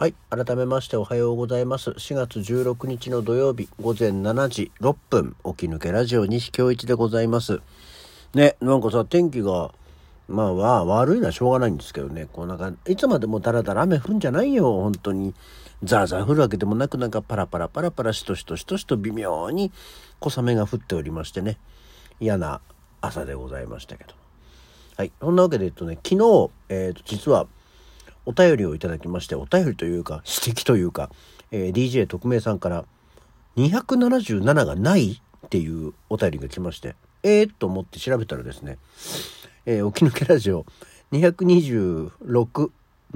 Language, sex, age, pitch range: Japanese, male, 50-69, 90-135 Hz